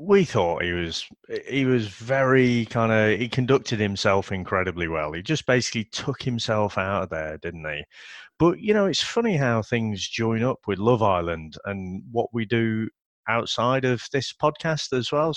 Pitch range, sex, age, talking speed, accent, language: 110-170 Hz, male, 30-49, 170 wpm, British, English